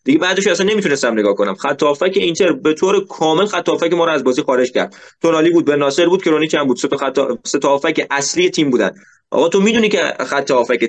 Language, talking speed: Persian, 215 wpm